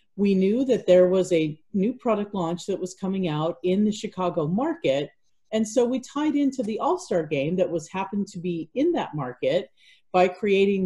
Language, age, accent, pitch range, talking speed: English, 40-59, American, 175-225 Hz, 195 wpm